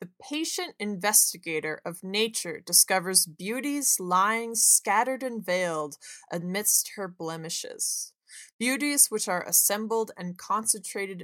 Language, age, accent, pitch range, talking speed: English, 20-39, American, 180-230 Hz, 105 wpm